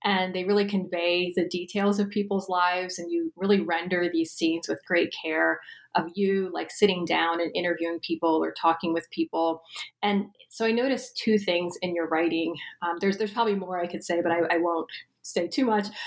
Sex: female